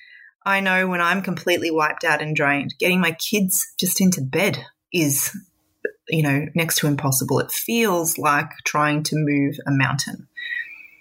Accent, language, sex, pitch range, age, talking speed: Australian, English, female, 155-195 Hz, 20-39, 160 wpm